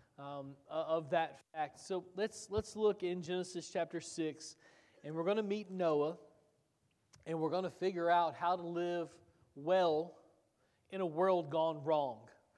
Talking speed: 160 wpm